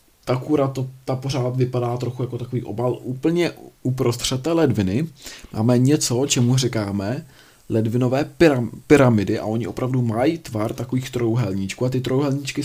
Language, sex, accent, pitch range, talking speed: Czech, male, native, 110-130 Hz, 140 wpm